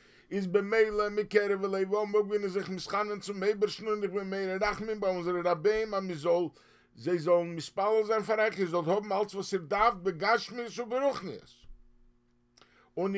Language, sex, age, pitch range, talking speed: English, male, 50-69, 140-210 Hz, 195 wpm